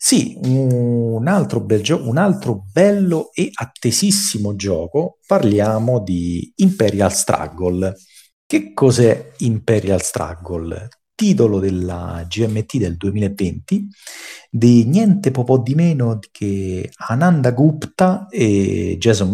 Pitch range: 90-125 Hz